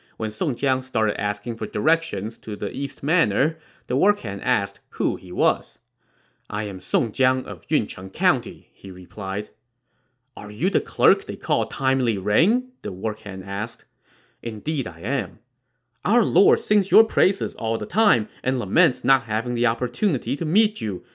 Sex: male